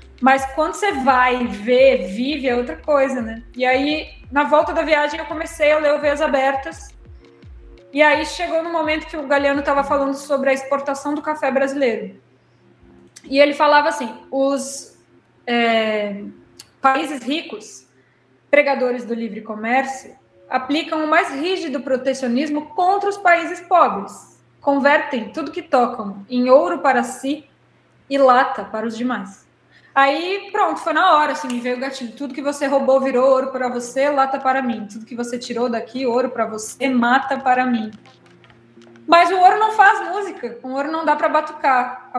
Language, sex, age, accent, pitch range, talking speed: Portuguese, female, 20-39, Brazilian, 245-295 Hz, 165 wpm